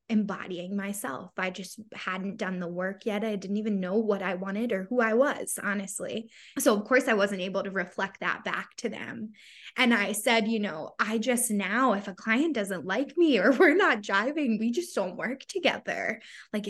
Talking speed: 205 wpm